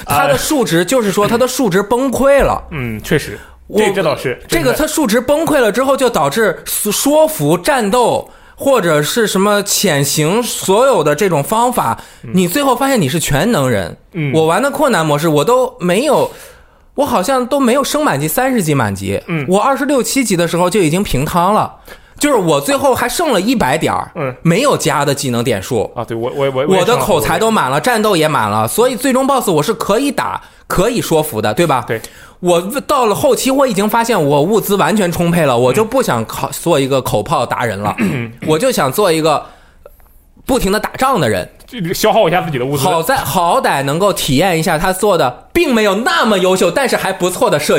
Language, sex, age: Chinese, male, 20-39